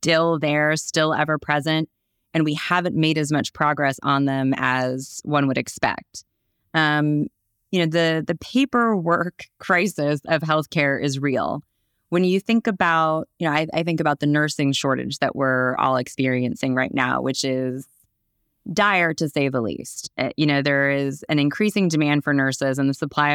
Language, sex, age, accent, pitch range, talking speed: English, female, 20-39, American, 135-160 Hz, 170 wpm